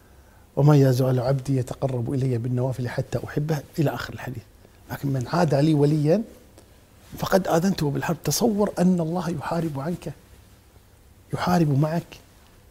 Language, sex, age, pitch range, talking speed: Arabic, male, 50-69, 100-165 Hz, 125 wpm